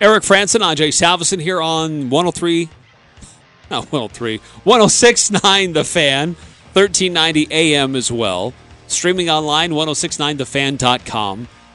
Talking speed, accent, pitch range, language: 95 wpm, American, 125-165 Hz, English